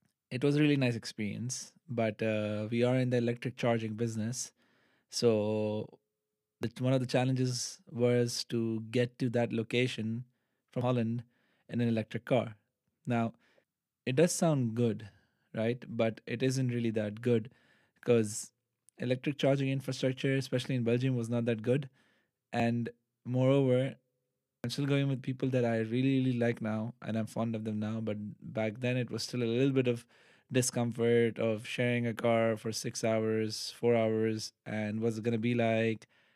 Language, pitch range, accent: English, 110-125 Hz, Indian